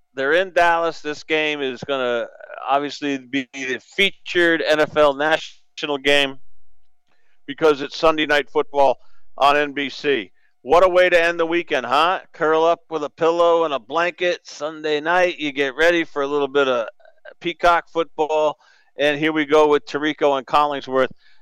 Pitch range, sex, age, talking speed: 140-170 Hz, male, 50-69, 165 wpm